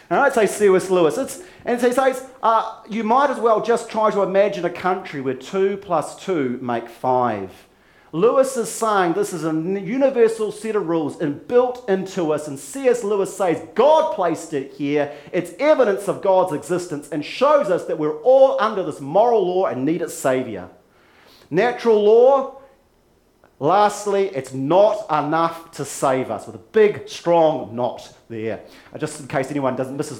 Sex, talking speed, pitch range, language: male, 175 wpm, 145-225 Hz, English